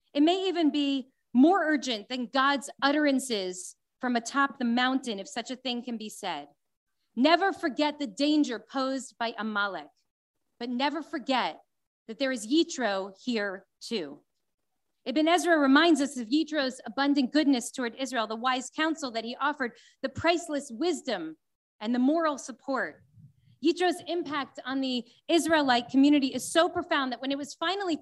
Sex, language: female, English